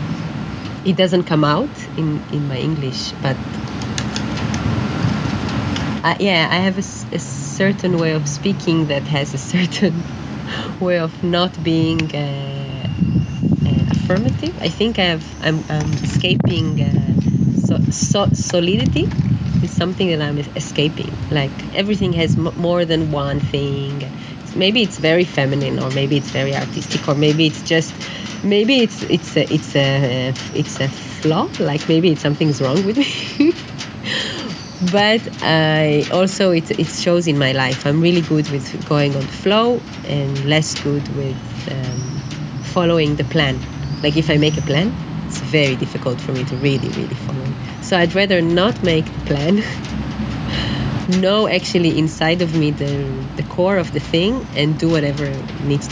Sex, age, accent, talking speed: female, 30-49, Italian, 155 wpm